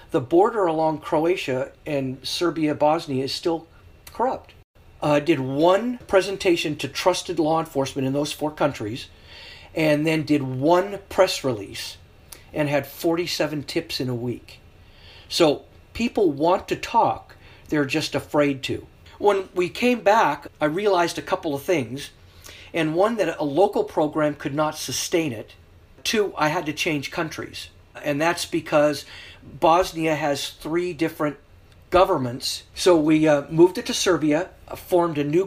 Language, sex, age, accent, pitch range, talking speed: English, male, 50-69, American, 140-175 Hz, 145 wpm